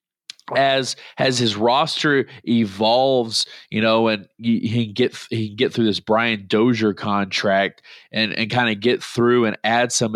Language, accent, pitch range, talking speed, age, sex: English, American, 105-120 Hz, 160 wpm, 30-49, male